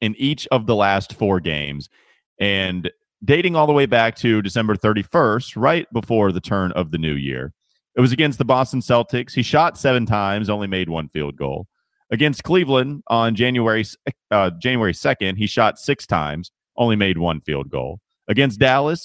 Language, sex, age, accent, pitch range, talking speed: English, male, 30-49, American, 95-130 Hz, 180 wpm